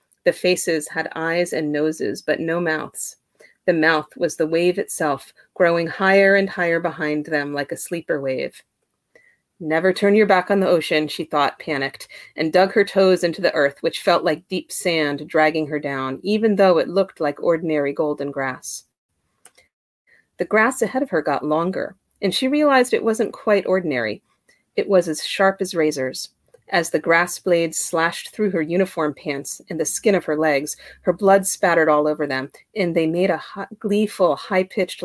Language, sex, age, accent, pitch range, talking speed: English, female, 30-49, American, 150-195 Hz, 180 wpm